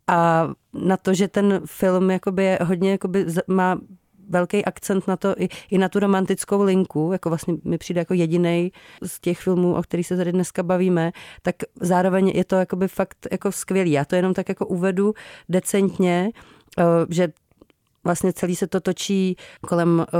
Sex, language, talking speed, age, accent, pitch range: female, Czech, 165 wpm, 40-59, native, 180-195 Hz